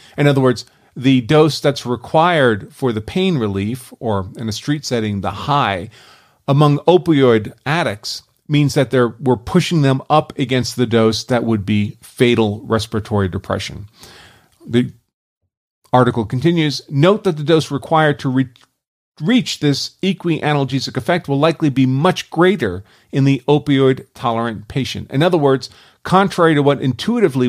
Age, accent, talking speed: 40-59, American, 145 wpm